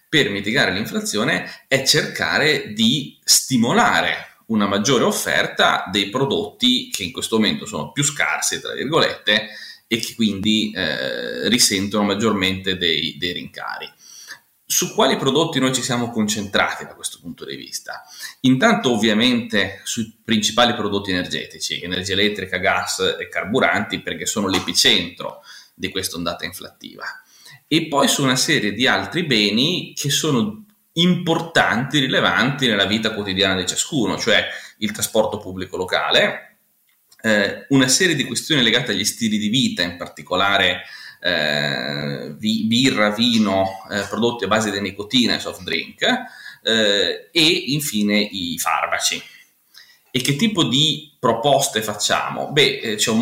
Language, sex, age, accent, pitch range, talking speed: Italian, male, 30-49, native, 105-170 Hz, 130 wpm